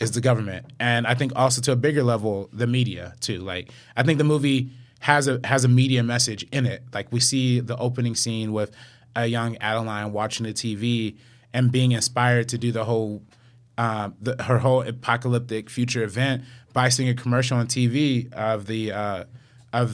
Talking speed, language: 190 wpm, English